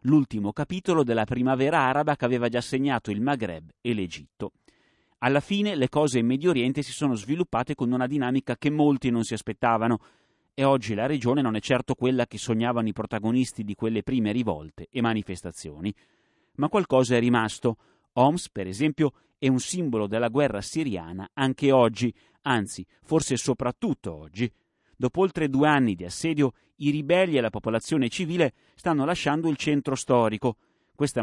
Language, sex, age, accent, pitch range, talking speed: Italian, male, 30-49, native, 110-145 Hz, 165 wpm